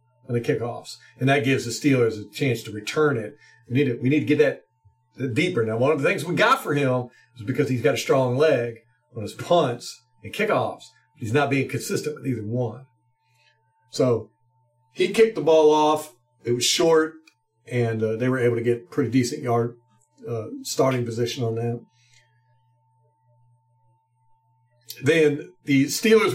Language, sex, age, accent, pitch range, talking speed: English, male, 50-69, American, 120-150 Hz, 170 wpm